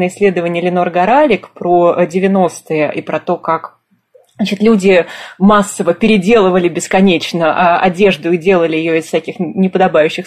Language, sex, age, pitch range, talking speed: Russian, female, 20-39, 170-205 Hz, 125 wpm